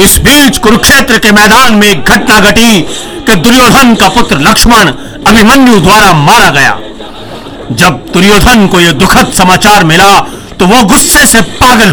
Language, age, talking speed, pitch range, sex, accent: Hindi, 50-69, 140 wpm, 180-230 Hz, male, native